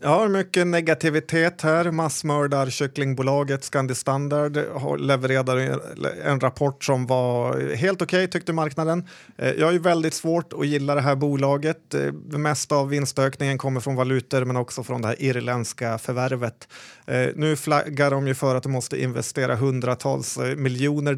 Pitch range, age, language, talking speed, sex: 125-150 Hz, 30-49, Swedish, 145 wpm, male